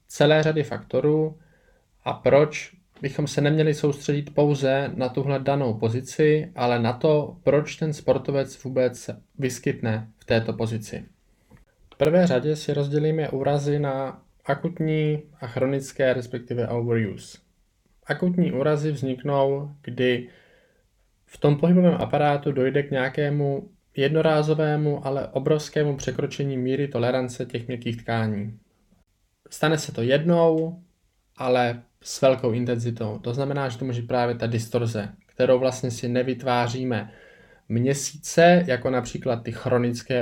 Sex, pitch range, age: male, 120-150 Hz, 20-39